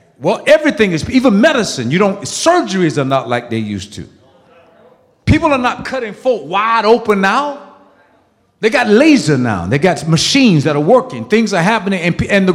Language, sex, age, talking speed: English, male, 50-69, 180 wpm